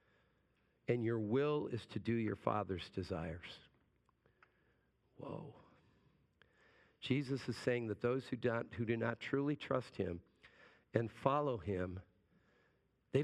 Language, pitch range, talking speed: English, 105-145 Hz, 120 wpm